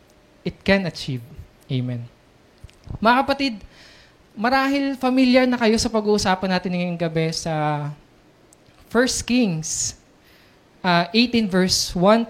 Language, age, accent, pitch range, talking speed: Filipino, 20-39, native, 170-225 Hz, 105 wpm